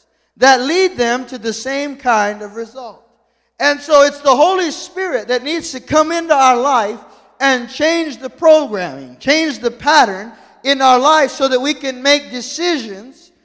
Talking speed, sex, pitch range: 170 wpm, male, 240-315 Hz